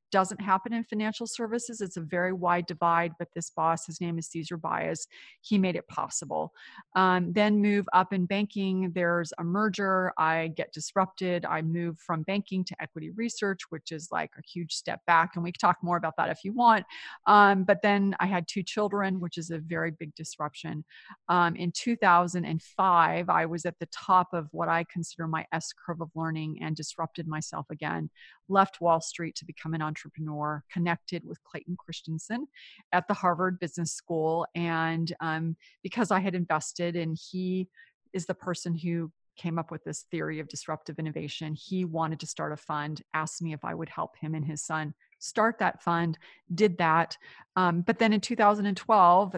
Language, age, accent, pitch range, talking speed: English, 30-49, American, 165-195 Hz, 190 wpm